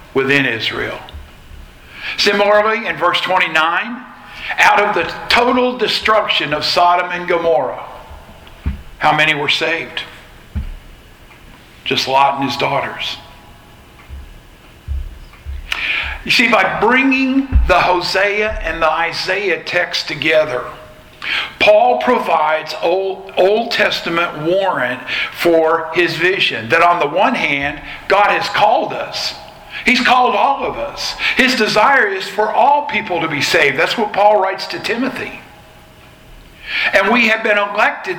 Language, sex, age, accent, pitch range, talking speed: English, male, 50-69, American, 150-215 Hz, 125 wpm